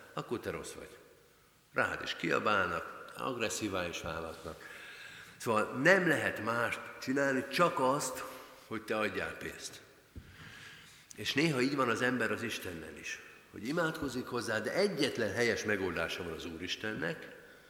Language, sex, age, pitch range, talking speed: Hungarian, male, 50-69, 95-150 Hz, 135 wpm